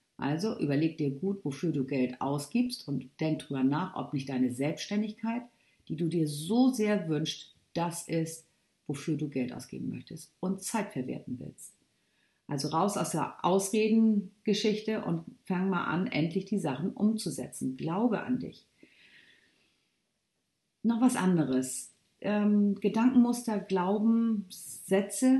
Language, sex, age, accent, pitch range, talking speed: German, female, 50-69, German, 150-210 Hz, 130 wpm